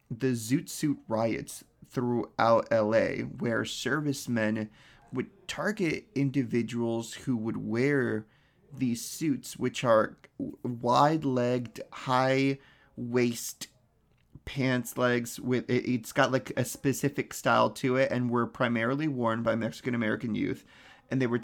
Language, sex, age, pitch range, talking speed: English, male, 30-49, 120-145 Hz, 115 wpm